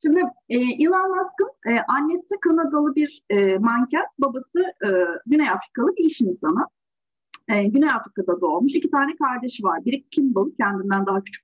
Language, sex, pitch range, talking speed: Turkish, female, 220-330 Hz, 145 wpm